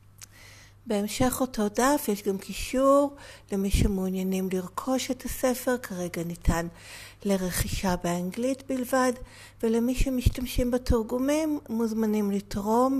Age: 60-79